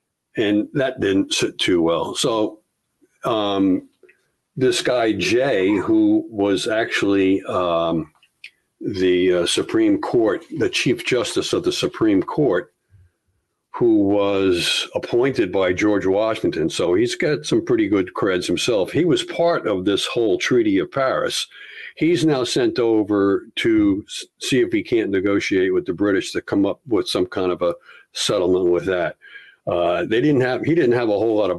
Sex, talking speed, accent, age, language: male, 160 wpm, American, 50-69, English